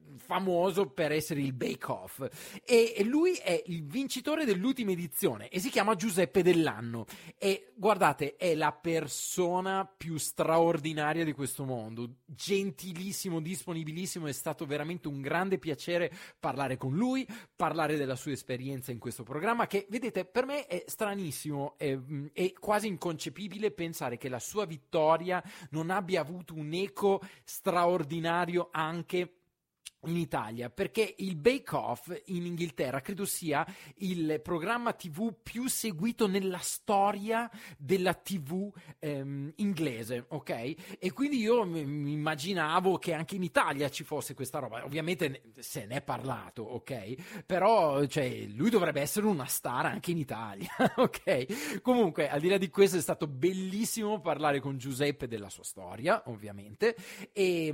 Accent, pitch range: native, 145-195 Hz